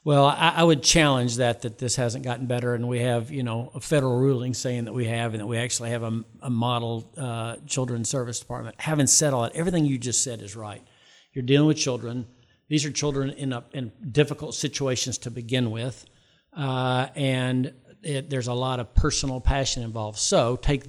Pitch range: 115-135 Hz